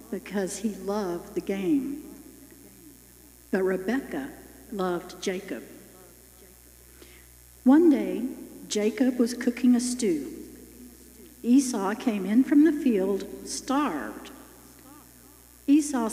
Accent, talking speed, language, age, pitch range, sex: American, 90 wpm, English, 60-79, 200-295 Hz, female